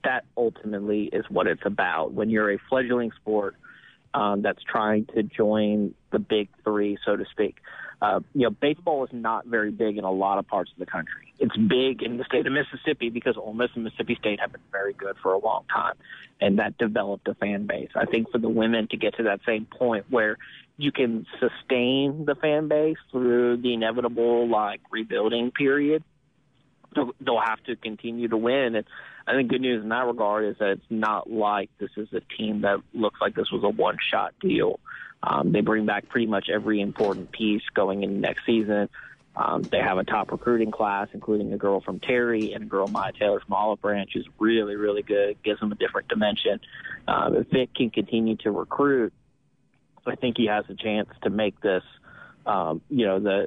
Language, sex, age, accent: English, male, 30-49, American